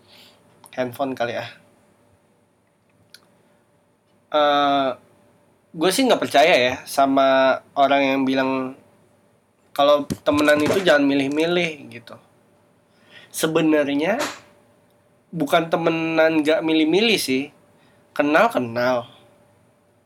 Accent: native